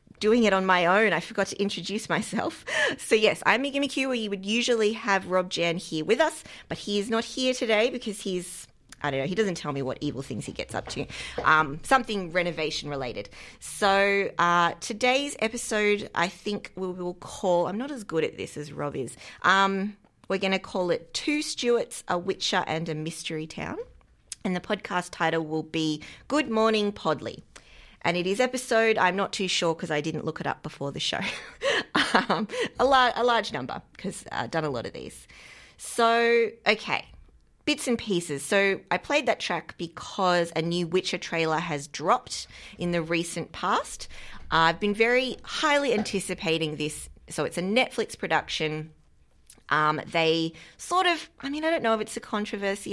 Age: 30-49